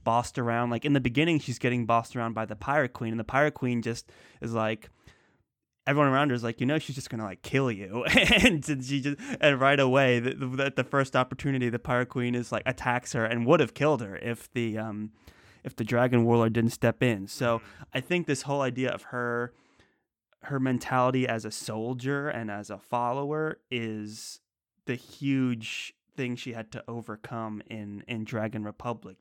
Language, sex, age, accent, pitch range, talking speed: English, male, 20-39, American, 110-130 Hz, 195 wpm